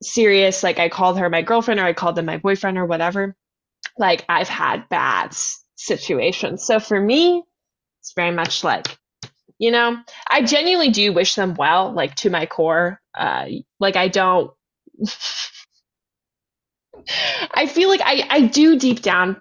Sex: female